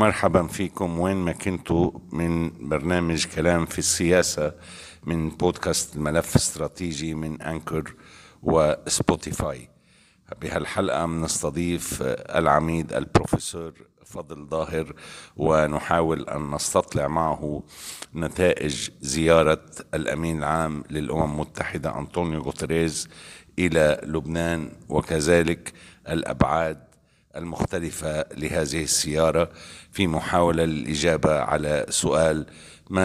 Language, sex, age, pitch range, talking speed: Arabic, male, 60-79, 80-85 Hz, 90 wpm